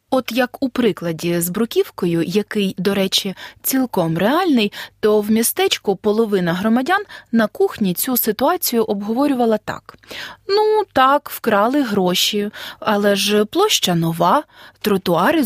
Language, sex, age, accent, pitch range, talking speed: Ukrainian, female, 20-39, native, 190-260 Hz, 120 wpm